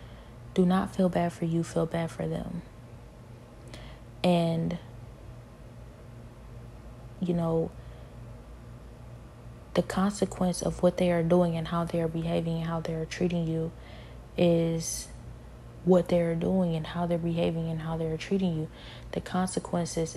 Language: English